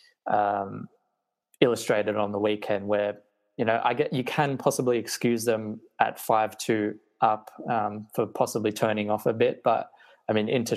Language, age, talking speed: English, 20-39, 160 wpm